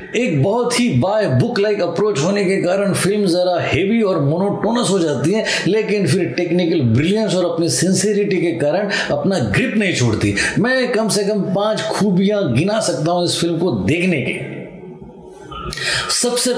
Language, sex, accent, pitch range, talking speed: Hindi, male, native, 165-200 Hz, 165 wpm